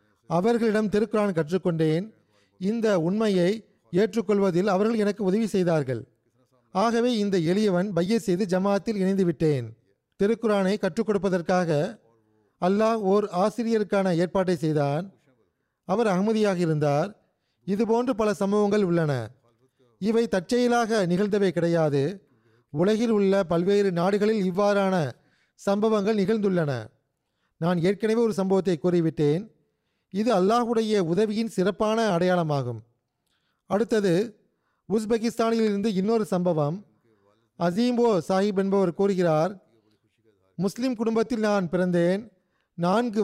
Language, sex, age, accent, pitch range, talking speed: Tamil, male, 30-49, native, 160-215 Hz, 90 wpm